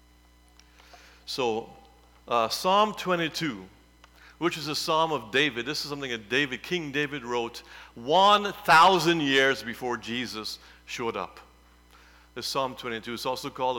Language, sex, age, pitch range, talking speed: English, male, 50-69, 105-135 Hz, 130 wpm